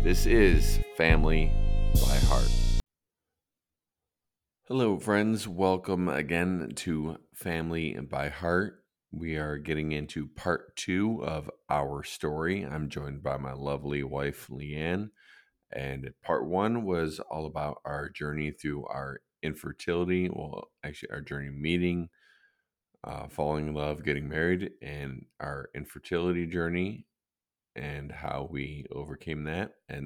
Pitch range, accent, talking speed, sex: 75-90 Hz, American, 120 wpm, male